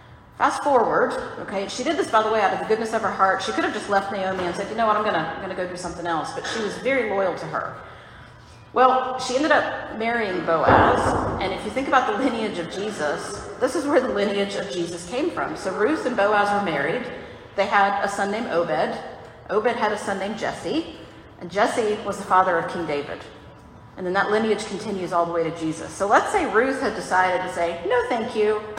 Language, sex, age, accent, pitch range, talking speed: English, female, 40-59, American, 180-220 Hz, 235 wpm